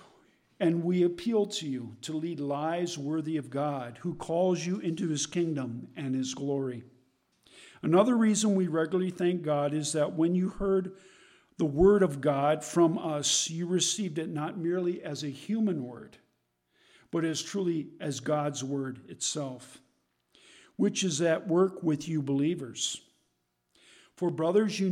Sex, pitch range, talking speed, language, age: male, 145-185 Hz, 150 wpm, English, 50-69